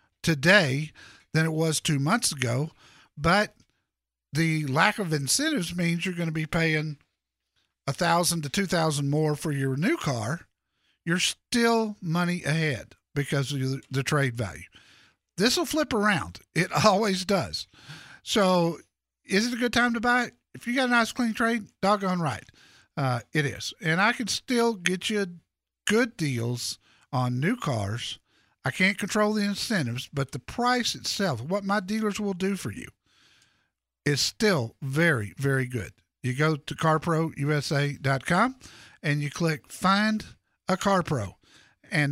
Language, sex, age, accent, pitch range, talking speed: English, male, 50-69, American, 140-185 Hz, 155 wpm